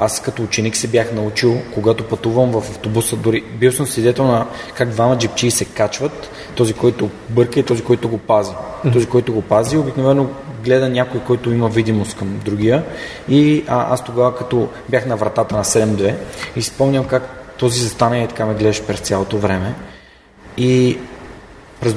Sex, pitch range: male, 110-125 Hz